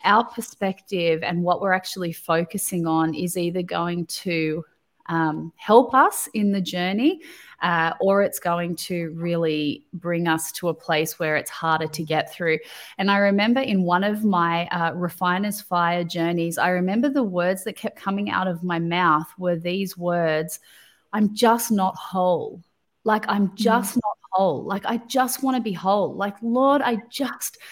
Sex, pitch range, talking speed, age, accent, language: female, 180-230 Hz, 175 wpm, 30-49, Australian, English